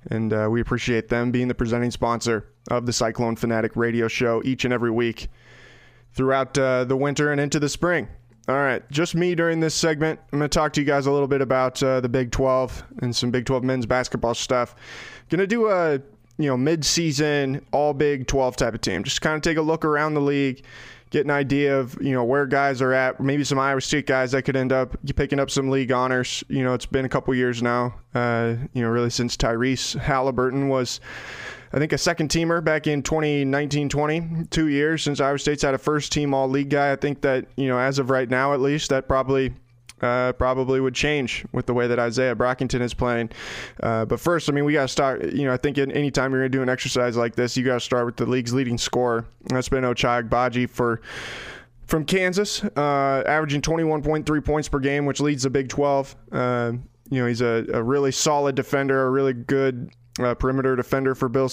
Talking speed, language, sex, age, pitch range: 220 wpm, English, male, 20-39, 125-145 Hz